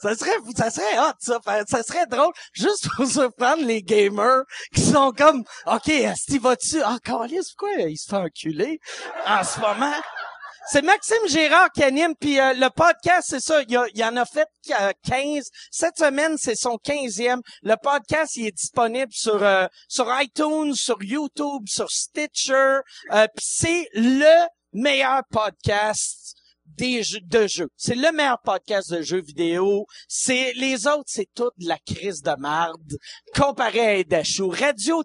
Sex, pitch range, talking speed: male, 200-285 Hz, 165 wpm